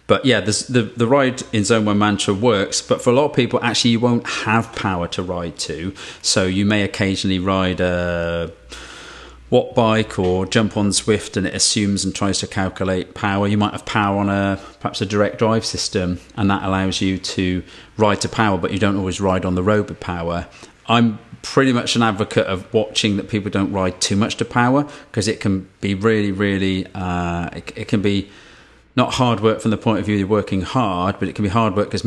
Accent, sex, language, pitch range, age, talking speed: British, male, English, 95-115 Hz, 40-59, 220 wpm